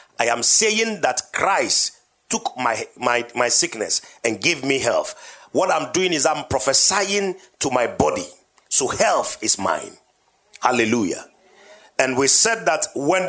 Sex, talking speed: male, 150 wpm